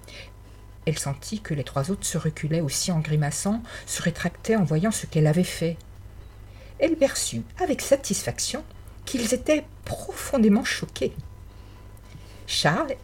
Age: 50-69